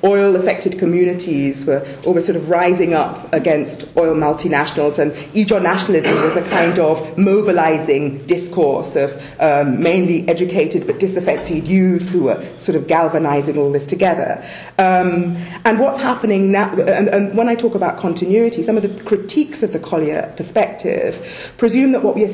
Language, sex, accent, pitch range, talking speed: English, female, British, 160-205 Hz, 160 wpm